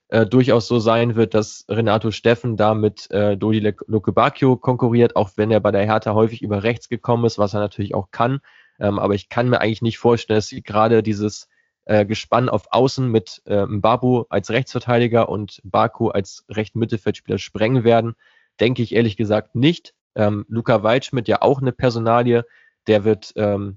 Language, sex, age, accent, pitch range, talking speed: German, male, 20-39, German, 105-120 Hz, 185 wpm